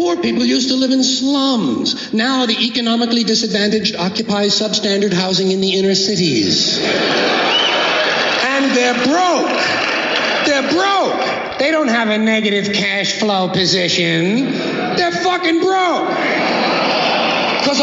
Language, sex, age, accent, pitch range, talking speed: English, male, 60-79, American, 190-255 Hz, 120 wpm